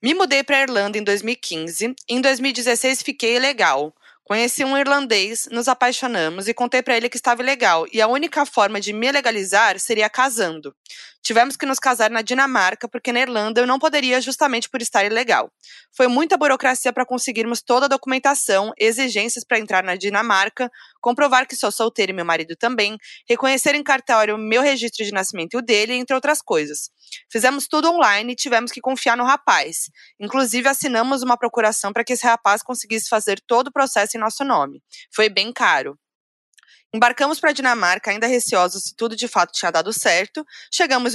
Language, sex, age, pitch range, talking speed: Portuguese, female, 20-39, 220-270 Hz, 180 wpm